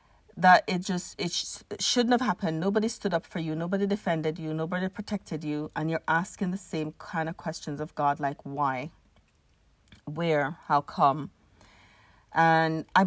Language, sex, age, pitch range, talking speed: English, female, 30-49, 160-200 Hz, 170 wpm